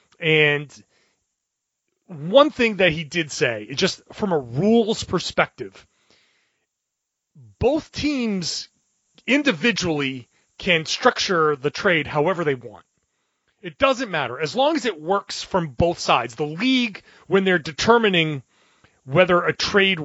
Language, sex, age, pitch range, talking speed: English, male, 30-49, 155-215 Hz, 125 wpm